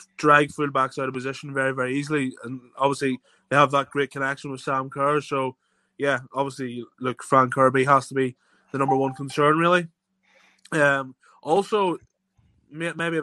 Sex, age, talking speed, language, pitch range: male, 20-39, 170 wpm, English, 135-155 Hz